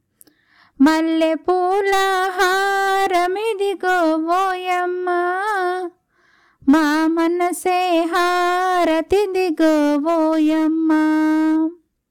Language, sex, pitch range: Telugu, female, 310-365 Hz